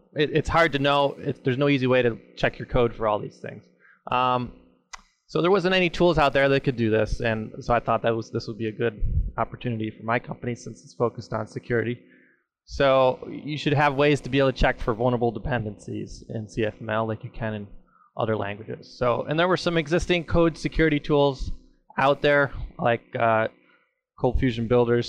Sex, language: male, English